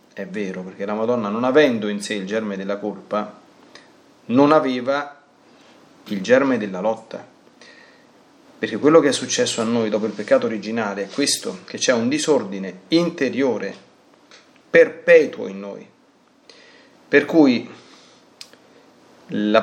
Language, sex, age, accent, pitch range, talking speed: Italian, male, 30-49, native, 105-165 Hz, 130 wpm